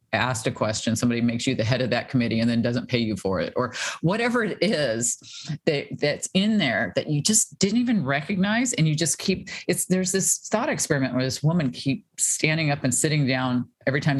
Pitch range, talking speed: 125-160 Hz, 220 wpm